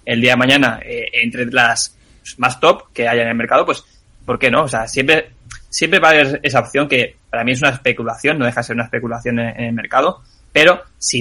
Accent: Spanish